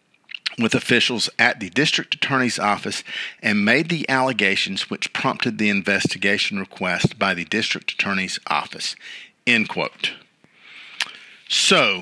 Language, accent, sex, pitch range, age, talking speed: English, American, male, 115-180 Hz, 50-69, 120 wpm